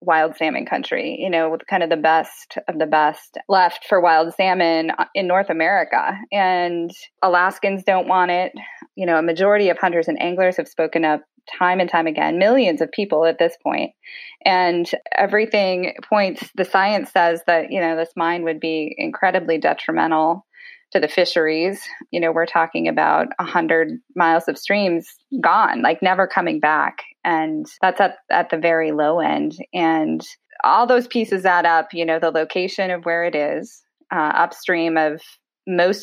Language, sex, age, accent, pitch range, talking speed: English, female, 20-39, American, 165-200 Hz, 175 wpm